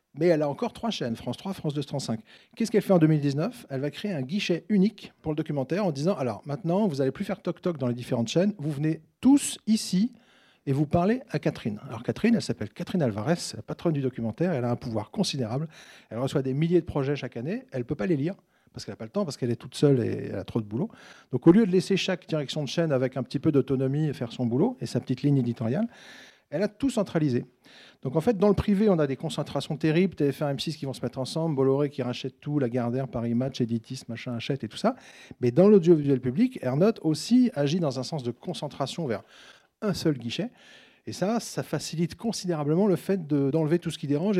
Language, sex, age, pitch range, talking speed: French, male, 40-59, 130-180 Hz, 245 wpm